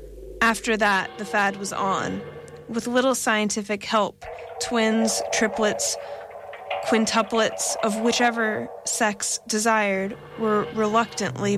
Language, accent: English, American